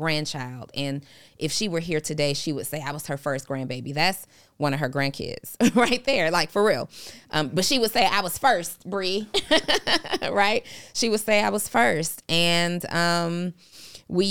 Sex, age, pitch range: female, 20-39, 140-170 Hz